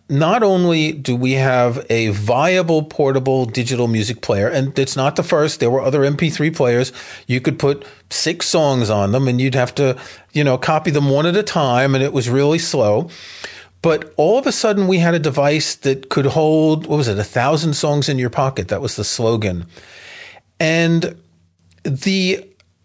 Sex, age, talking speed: male, 40-59, 190 wpm